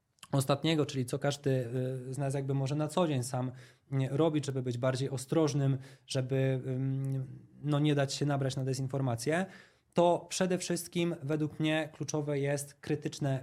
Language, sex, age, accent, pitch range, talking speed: Polish, male, 20-39, native, 130-155 Hz, 150 wpm